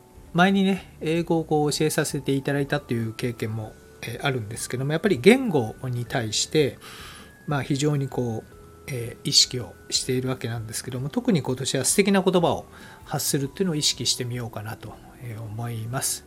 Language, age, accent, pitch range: Japanese, 40-59, native, 120-155 Hz